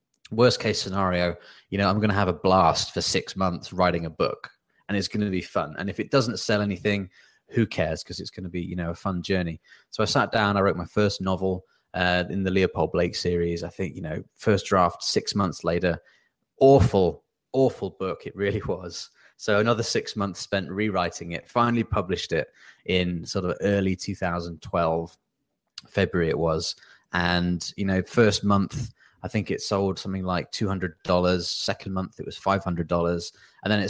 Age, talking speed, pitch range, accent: 20-39, 200 wpm, 85-100 Hz, British